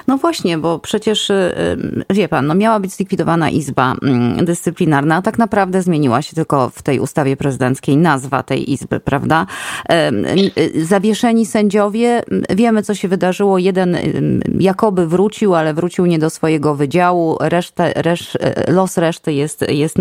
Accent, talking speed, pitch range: native, 140 wpm, 155-220 Hz